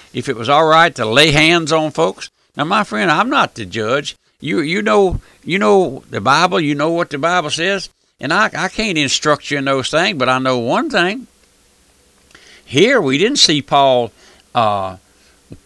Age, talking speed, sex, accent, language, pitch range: 60-79, 190 wpm, male, American, English, 135-200 Hz